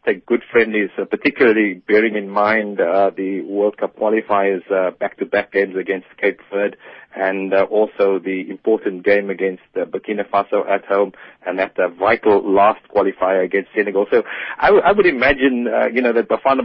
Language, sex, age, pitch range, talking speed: English, male, 30-49, 100-120 Hz, 185 wpm